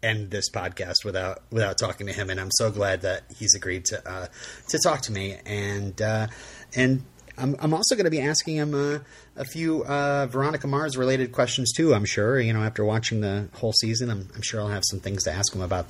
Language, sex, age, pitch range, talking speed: English, male, 30-49, 100-135 Hz, 230 wpm